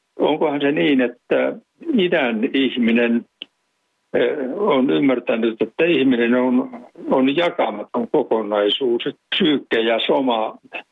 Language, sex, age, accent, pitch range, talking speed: Finnish, male, 60-79, native, 110-130 Hz, 95 wpm